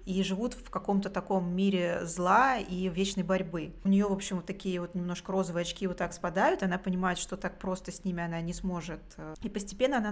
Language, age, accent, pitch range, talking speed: Russian, 20-39, native, 175-200 Hz, 215 wpm